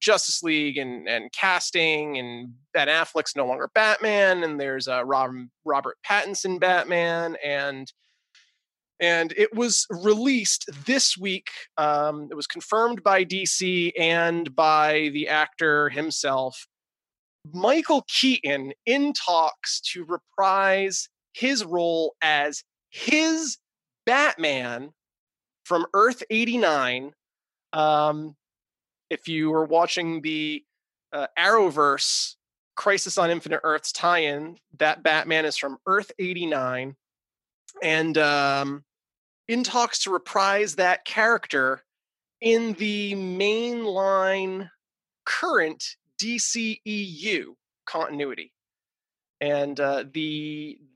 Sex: male